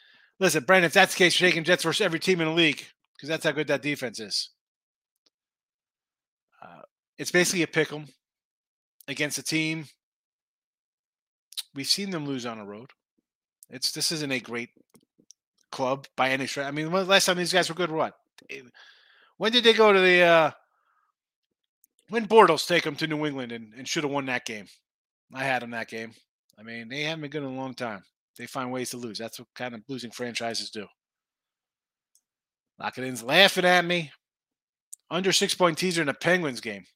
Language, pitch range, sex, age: English, 130-180 Hz, male, 30-49